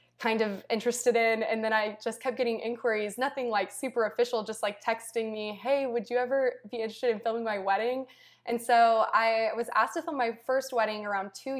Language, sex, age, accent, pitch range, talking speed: English, female, 20-39, American, 210-235 Hz, 210 wpm